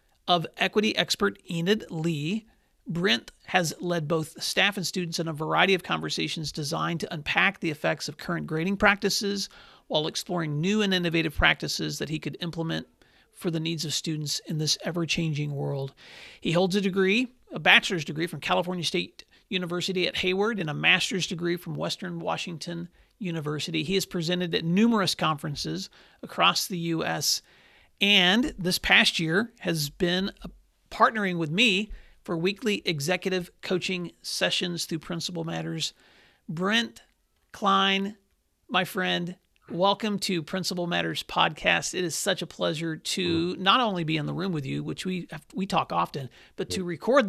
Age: 40-59